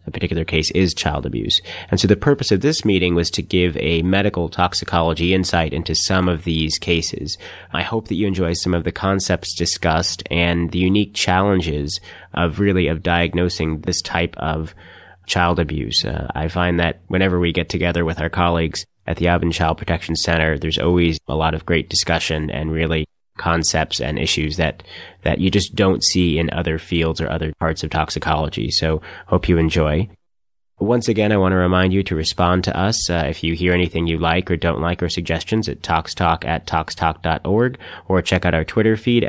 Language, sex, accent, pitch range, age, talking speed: English, male, American, 80-95 Hz, 30-49, 195 wpm